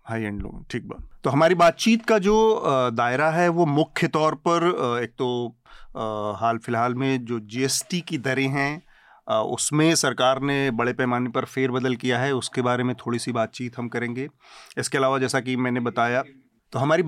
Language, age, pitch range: Hindi, 40-59, 120-145 Hz